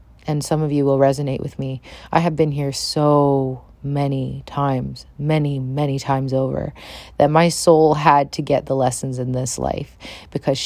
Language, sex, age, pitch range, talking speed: English, female, 30-49, 130-150 Hz, 175 wpm